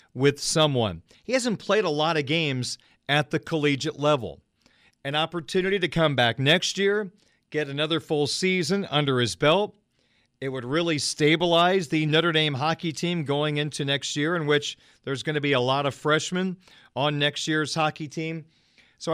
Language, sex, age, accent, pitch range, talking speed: English, male, 40-59, American, 135-165 Hz, 175 wpm